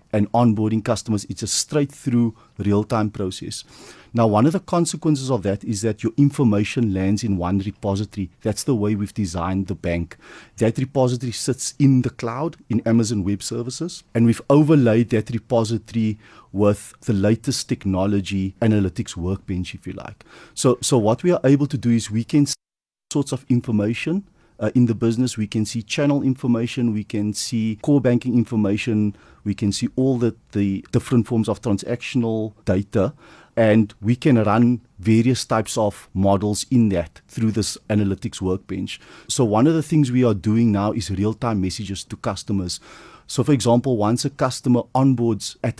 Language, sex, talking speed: English, male, 170 wpm